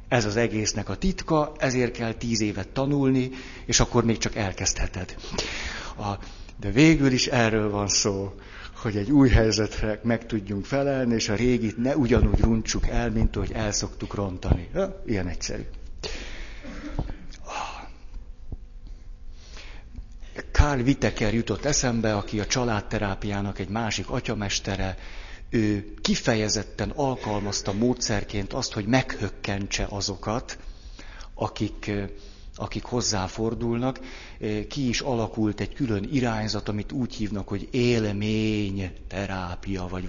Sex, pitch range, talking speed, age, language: male, 100-120 Hz, 115 wpm, 60-79, Hungarian